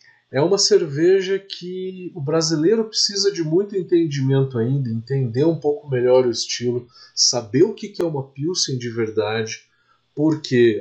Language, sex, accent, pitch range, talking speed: Portuguese, male, Brazilian, 120-165 Hz, 145 wpm